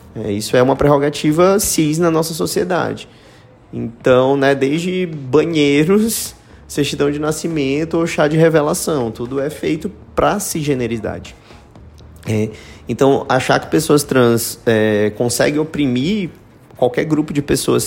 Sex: male